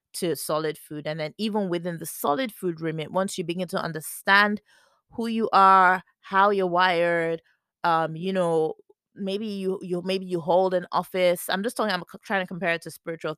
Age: 20-39